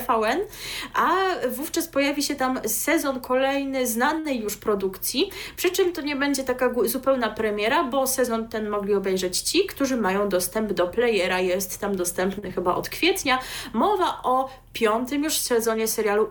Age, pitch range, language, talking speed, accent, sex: 20-39, 205-270 Hz, Polish, 150 wpm, native, female